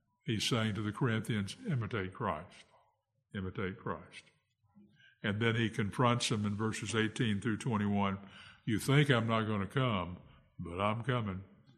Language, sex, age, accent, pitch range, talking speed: English, male, 60-79, American, 105-125 Hz, 150 wpm